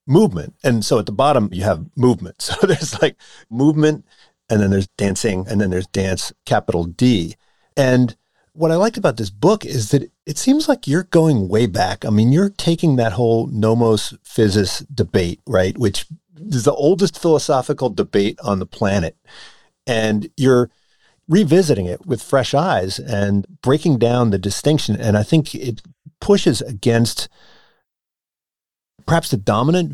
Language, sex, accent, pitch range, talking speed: English, male, American, 105-145 Hz, 160 wpm